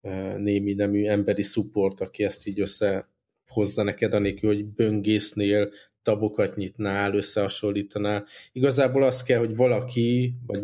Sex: male